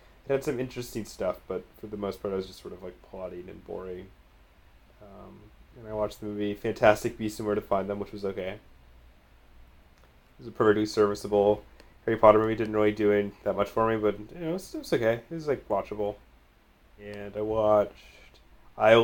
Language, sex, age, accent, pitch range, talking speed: English, male, 20-39, American, 95-115 Hz, 200 wpm